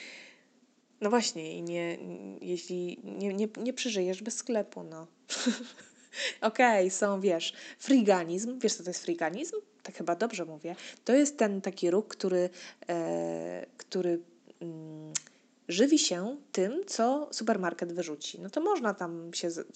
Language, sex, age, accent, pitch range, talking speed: Polish, female, 20-39, native, 175-250 Hz, 145 wpm